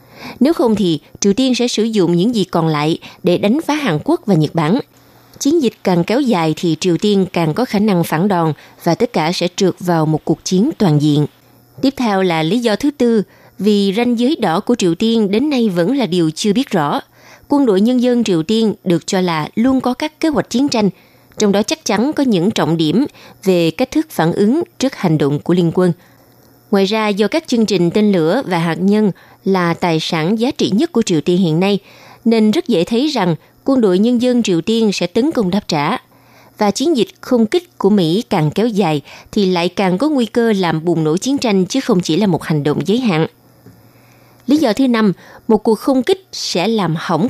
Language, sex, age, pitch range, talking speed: Vietnamese, female, 20-39, 170-240 Hz, 230 wpm